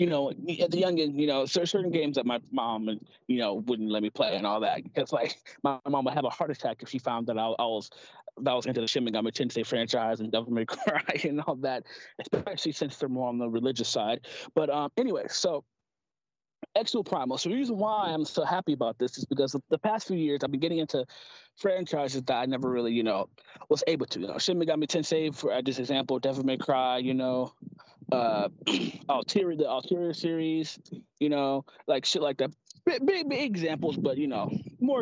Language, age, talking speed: English, 20-39, 225 wpm